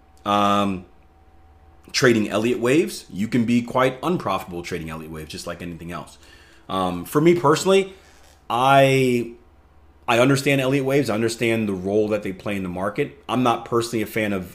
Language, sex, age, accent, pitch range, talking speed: English, male, 30-49, American, 85-105 Hz, 170 wpm